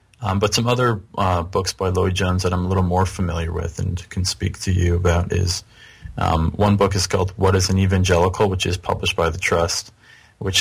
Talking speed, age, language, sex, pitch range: 215 wpm, 30-49, English, male, 90-105 Hz